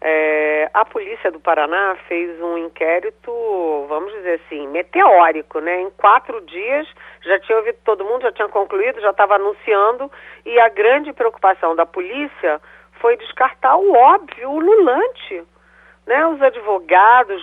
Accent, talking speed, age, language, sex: Brazilian, 140 wpm, 40-59, Portuguese, female